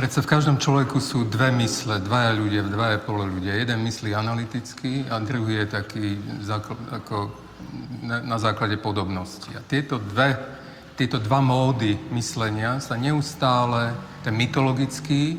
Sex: male